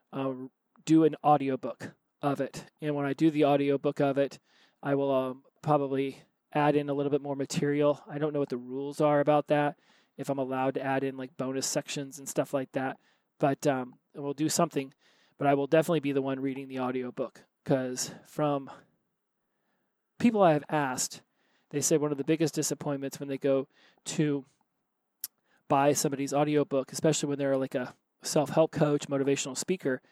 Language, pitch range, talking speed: English, 135-150 Hz, 180 wpm